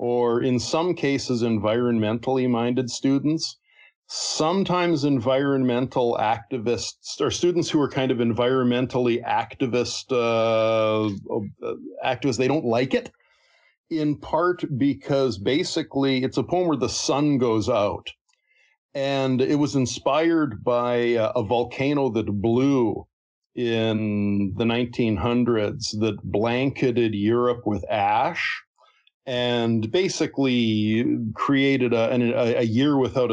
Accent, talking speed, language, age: American, 110 wpm, English, 50-69